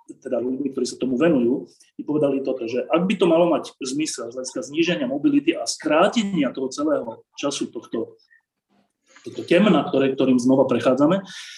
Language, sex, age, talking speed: Slovak, male, 30-49, 160 wpm